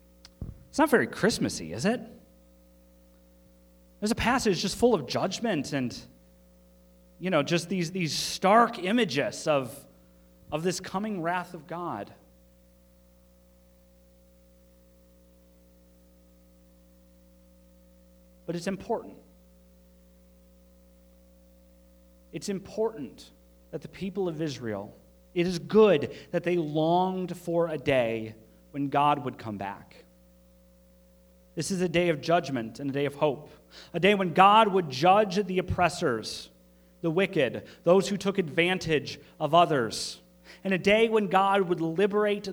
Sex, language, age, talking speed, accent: male, English, 30-49, 120 wpm, American